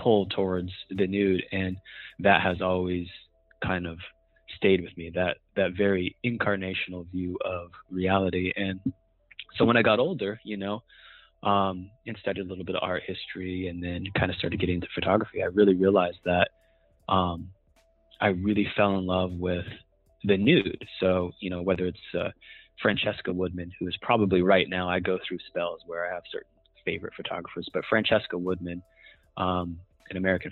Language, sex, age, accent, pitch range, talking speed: English, male, 20-39, American, 90-100 Hz, 170 wpm